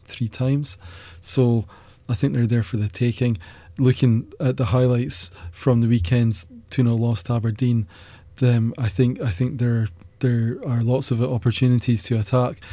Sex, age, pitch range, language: male, 20-39, 115-130 Hz, English